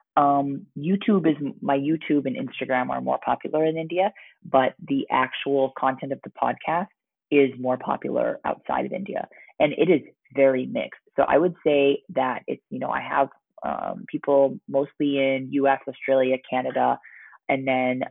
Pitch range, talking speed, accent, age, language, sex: 130-160 Hz, 160 wpm, American, 30-49, English, female